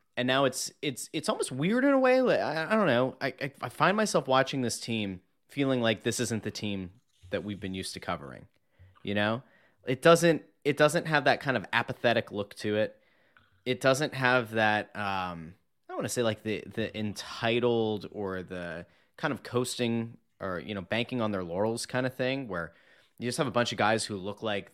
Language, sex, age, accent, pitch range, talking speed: English, male, 30-49, American, 100-135 Hz, 210 wpm